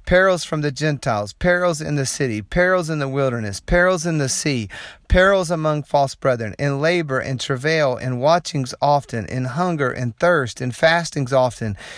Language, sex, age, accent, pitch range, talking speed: English, male, 40-59, American, 130-165 Hz, 170 wpm